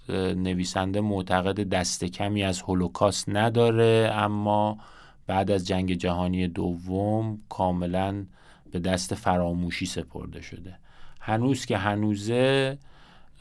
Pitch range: 90-110 Hz